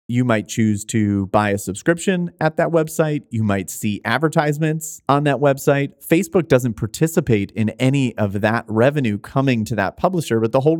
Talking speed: 180 wpm